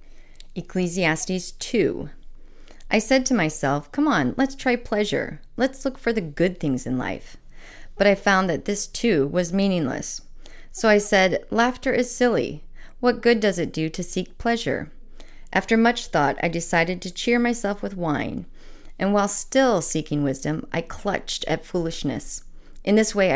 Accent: American